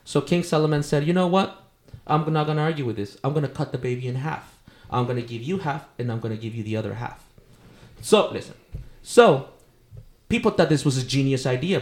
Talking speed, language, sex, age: 240 wpm, English, male, 20-39